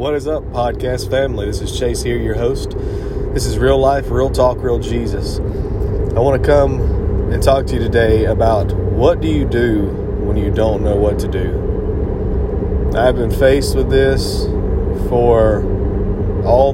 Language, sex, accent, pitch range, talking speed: English, male, American, 100-115 Hz, 170 wpm